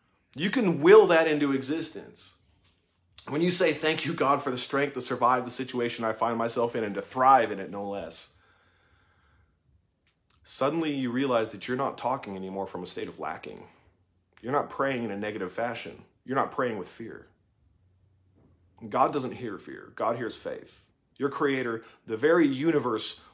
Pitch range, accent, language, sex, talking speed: 95-145 Hz, American, English, male, 170 wpm